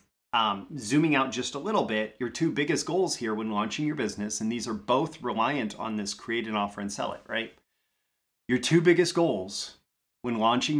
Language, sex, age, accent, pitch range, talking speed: English, male, 30-49, American, 105-135 Hz, 200 wpm